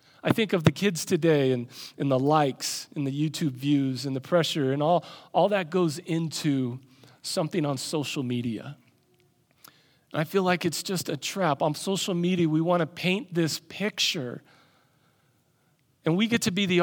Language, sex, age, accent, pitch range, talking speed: English, male, 40-59, American, 155-225 Hz, 175 wpm